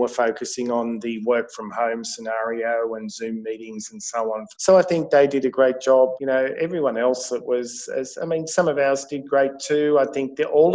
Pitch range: 120-135 Hz